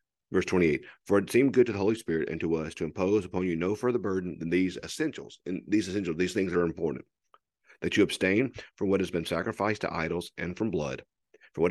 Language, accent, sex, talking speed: English, American, male, 230 wpm